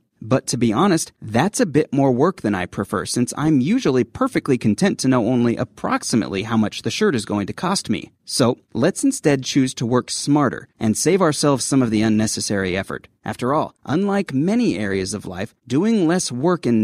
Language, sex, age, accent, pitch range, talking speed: English, male, 30-49, American, 115-165 Hz, 200 wpm